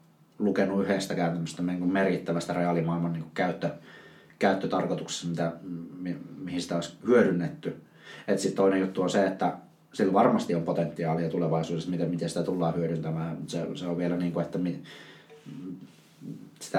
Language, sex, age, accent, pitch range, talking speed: Finnish, male, 30-49, native, 85-95 Hz, 105 wpm